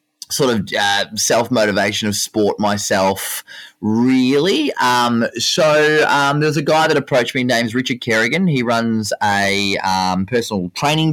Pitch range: 110-145 Hz